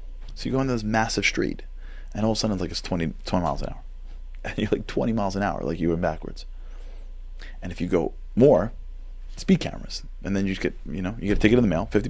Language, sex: English, male